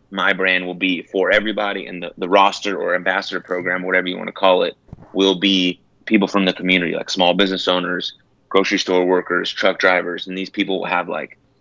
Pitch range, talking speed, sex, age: 90-100 Hz, 205 wpm, male, 30-49